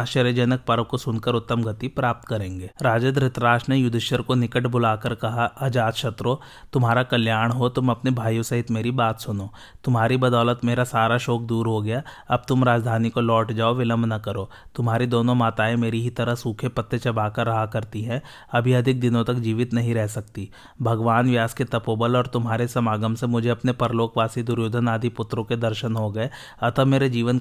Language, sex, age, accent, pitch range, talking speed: Hindi, male, 30-49, native, 115-125 Hz, 70 wpm